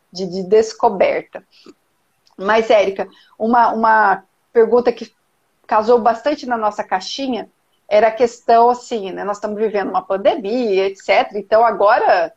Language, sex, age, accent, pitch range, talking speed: Portuguese, female, 50-69, Brazilian, 200-265 Hz, 125 wpm